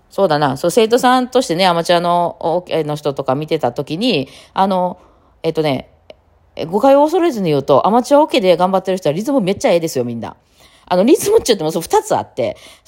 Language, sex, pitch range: Japanese, female, 140-190 Hz